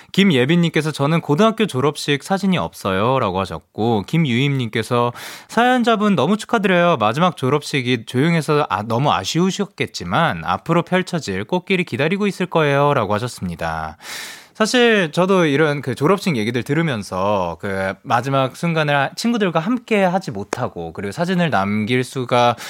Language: Korean